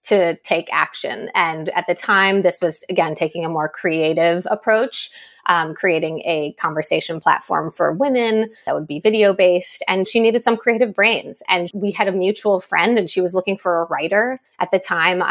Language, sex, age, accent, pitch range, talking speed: English, female, 20-39, American, 175-220 Hz, 190 wpm